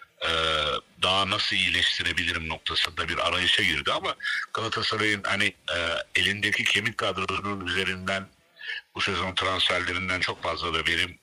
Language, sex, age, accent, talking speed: Turkish, male, 60-79, native, 125 wpm